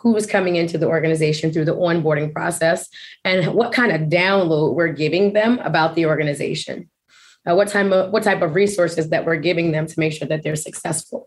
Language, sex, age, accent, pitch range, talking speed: English, female, 20-39, American, 160-185 Hz, 200 wpm